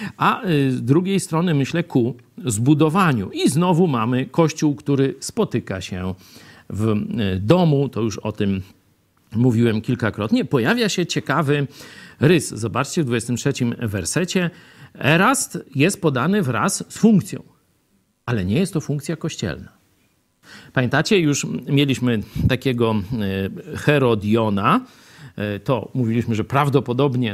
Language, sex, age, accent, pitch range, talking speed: Polish, male, 50-69, native, 110-165 Hz, 110 wpm